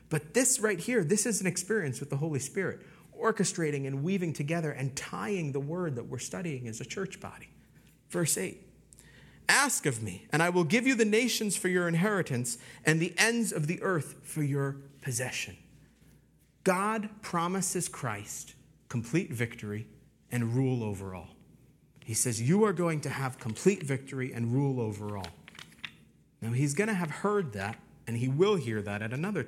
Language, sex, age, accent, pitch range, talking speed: English, male, 40-59, American, 130-195 Hz, 175 wpm